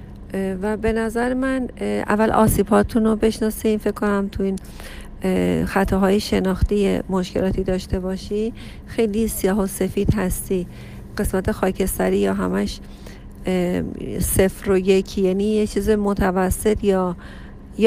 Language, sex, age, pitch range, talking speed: Persian, female, 40-59, 170-210 Hz, 115 wpm